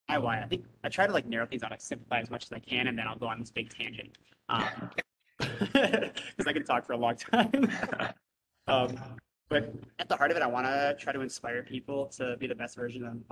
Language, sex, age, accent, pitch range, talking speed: English, male, 20-39, American, 115-130 Hz, 250 wpm